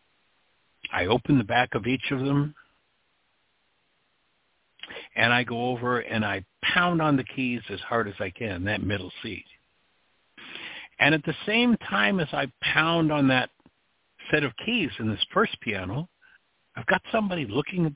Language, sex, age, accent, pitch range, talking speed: English, male, 60-79, American, 115-155 Hz, 160 wpm